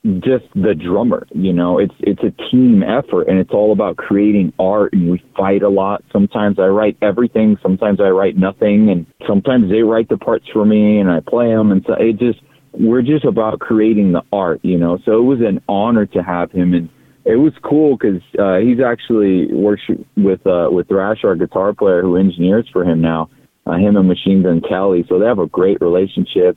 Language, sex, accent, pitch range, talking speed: English, male, American, 95-130 Hz, 210 wpm